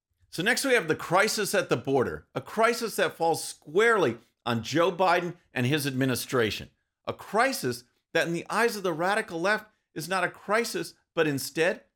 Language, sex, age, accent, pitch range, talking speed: English, male, 50-69, American, 140-200 Hz, 180 wpm